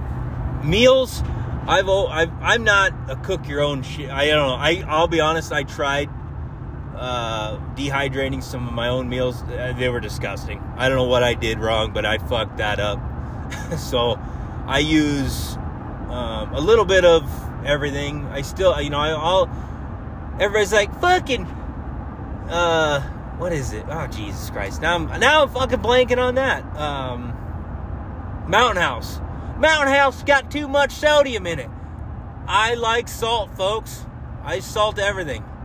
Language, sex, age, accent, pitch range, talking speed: English, male, 30-49, American, 115-175 Hz, 155 wpm